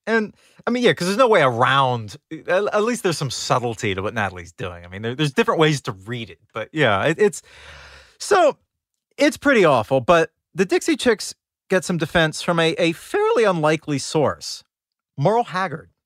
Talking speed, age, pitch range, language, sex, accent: 185 wpm, 30-49, 125-180 Hz, English, male, American